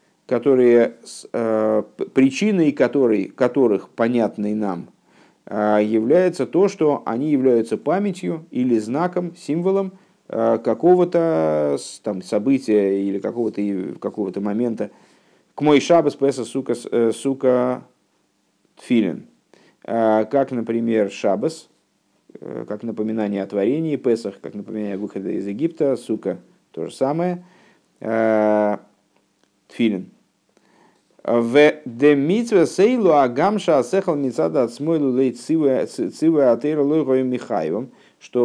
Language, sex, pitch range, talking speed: Russian, male, 105-150 Hz, 75 wpm